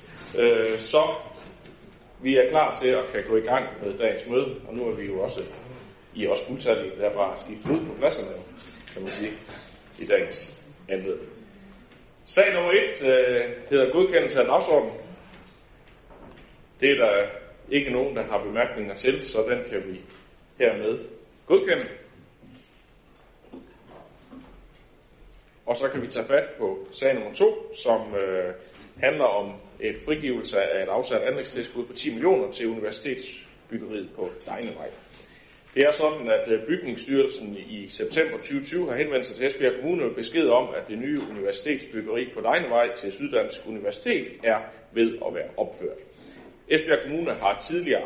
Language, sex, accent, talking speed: Danish, male, native, 150 wpm